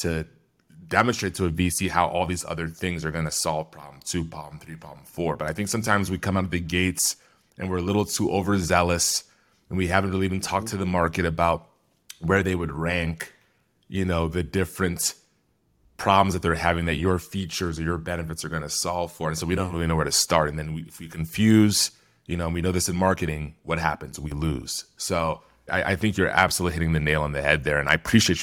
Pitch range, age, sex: 80-95 Hz, 30-49, male